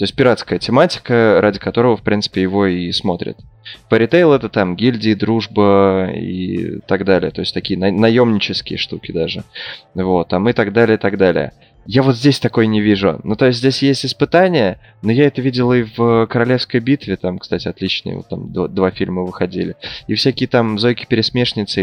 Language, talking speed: Russian, 180 wpm